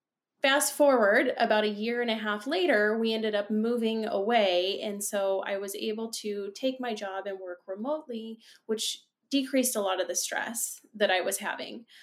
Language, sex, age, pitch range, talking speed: English, female, 20-39, 190-235 Hz, 185 wpm